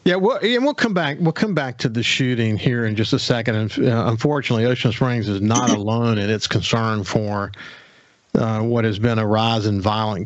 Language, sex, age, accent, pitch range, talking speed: English, male, 50-69, American, 110-135 Hz, 215 wpm